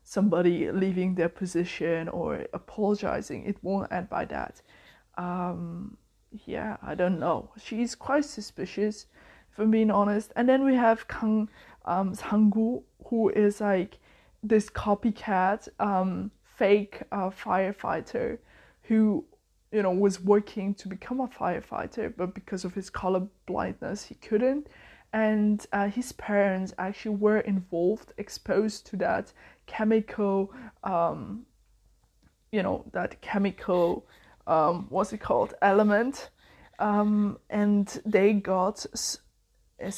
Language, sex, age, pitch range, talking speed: English, female, 20-39, 190-220 Hz, 125 wpm